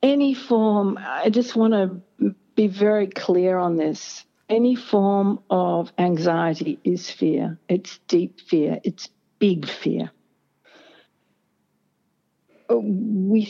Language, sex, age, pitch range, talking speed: English, female, 60-79, 170-215 Hz, 105 wpm